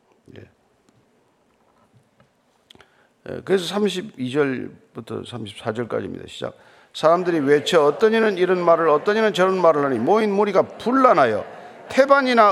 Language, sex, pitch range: Korean, male, 150-215 Hz